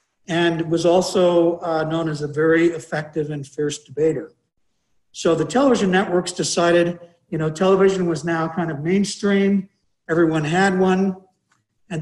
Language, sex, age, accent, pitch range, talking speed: English, male, 60-79, American, 160-190 Hz, 145 wpm